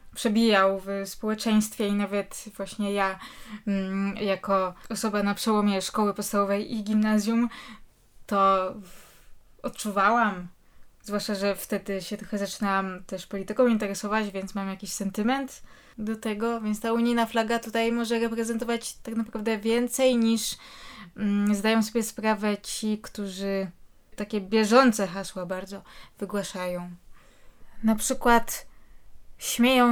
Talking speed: 110 wpm